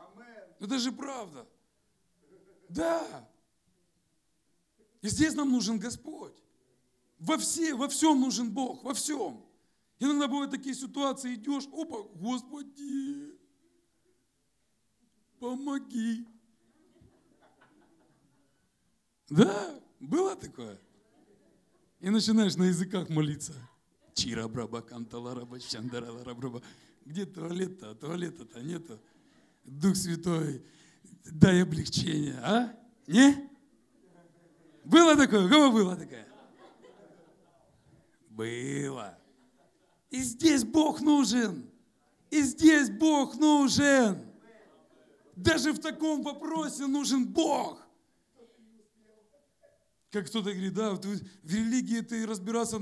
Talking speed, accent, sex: 85 wpm, native, male